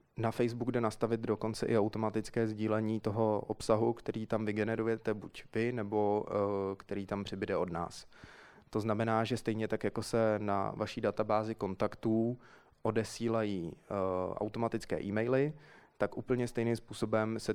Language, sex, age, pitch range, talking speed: Czech, male, 20-39, 100-115 Hz, 135 wpm